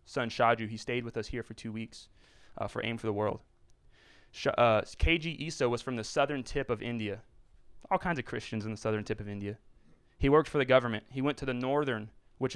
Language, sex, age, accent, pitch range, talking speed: English, male, 20-39, American, 110-145 Hz, 230 wpm